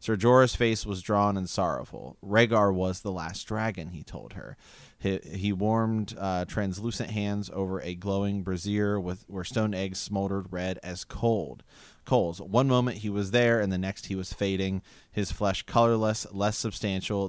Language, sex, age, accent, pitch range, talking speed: English, male, 30-49, American, 90-110 Hz, 170 wpm